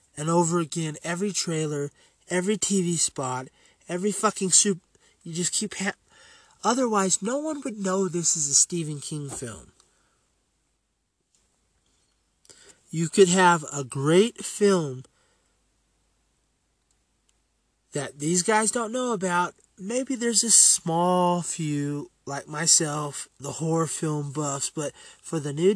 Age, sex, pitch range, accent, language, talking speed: 30-49, male, 150-205 Hz, American, English, 125 wpm